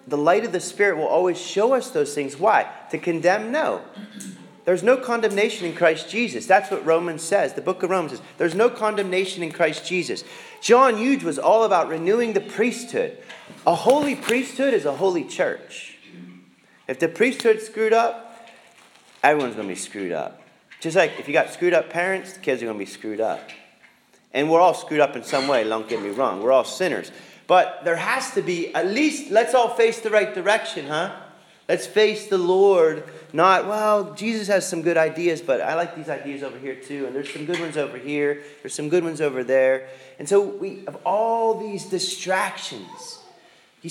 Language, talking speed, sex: English, 200 wpm, male